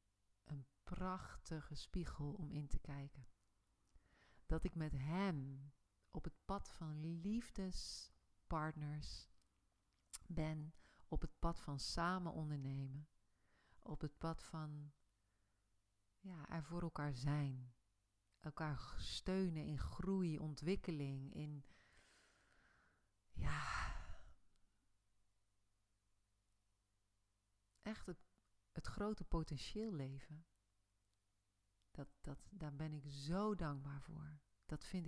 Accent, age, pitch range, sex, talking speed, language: Dutch, 40-59, 100-160 Hz, female, 90 wpm, Dutch